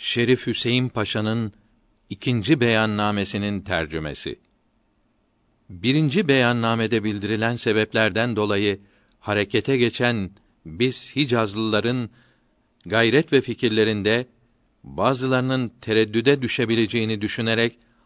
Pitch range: 110-130 Hz